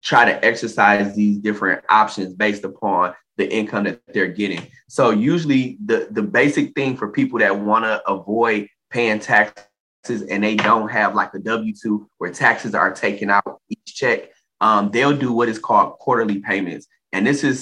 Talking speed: 175 wpm